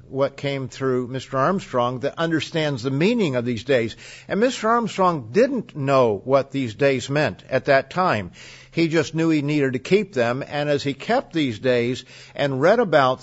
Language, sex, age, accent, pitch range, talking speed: English, male, 50-69, American, 125-160 Hz, 185 wpm